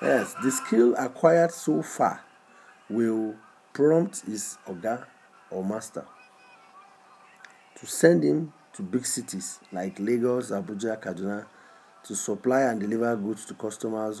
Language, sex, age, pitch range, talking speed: English, male, 50-69, 105-130 Hz, 125 wpm